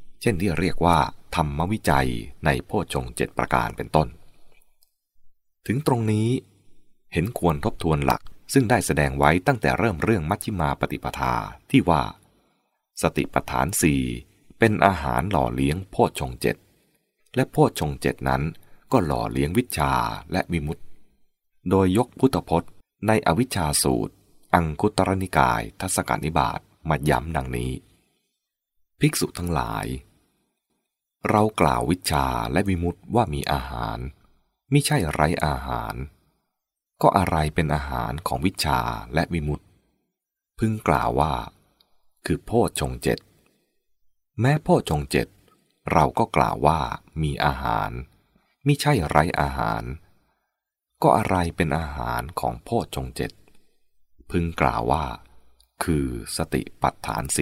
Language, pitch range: English, 70-100 Hz